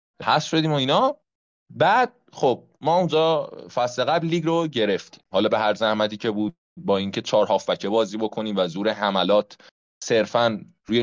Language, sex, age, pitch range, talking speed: Persian, male, 20-39, 110-145 Hz, 170 wpm